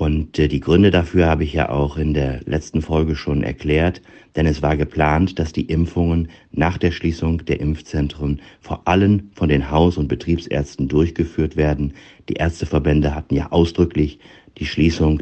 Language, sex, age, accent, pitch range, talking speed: German, male, 50-69, German, 75-85 Hz, 165 wpm